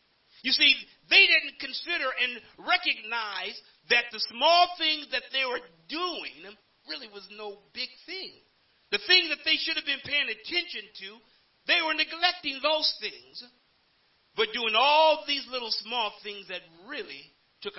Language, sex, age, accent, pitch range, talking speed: English, male, 50-69, American, 210-310 Hz, 150 wpm